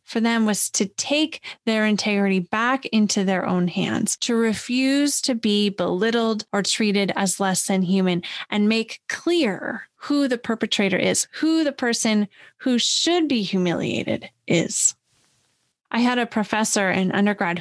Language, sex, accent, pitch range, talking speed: English, female, American, 190-235 Hz, 150 wpm